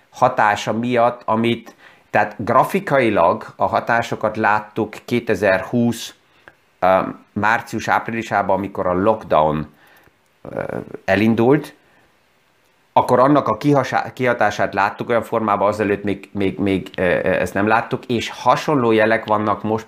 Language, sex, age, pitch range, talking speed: Hungarian, male, 30-49, 95-115 Hz, 100 wpm